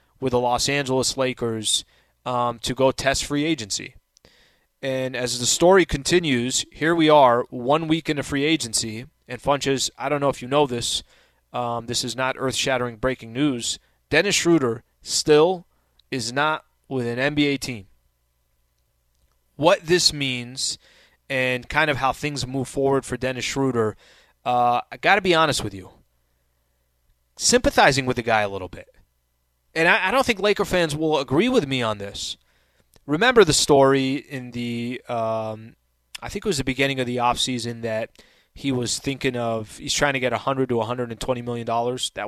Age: 20-39